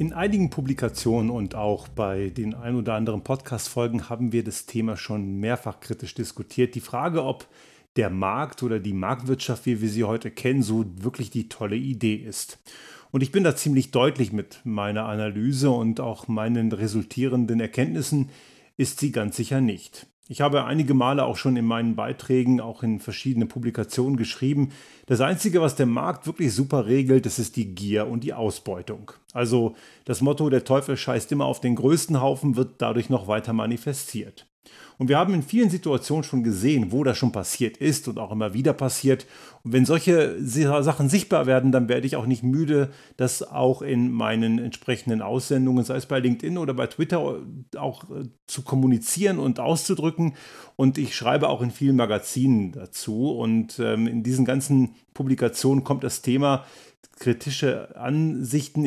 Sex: male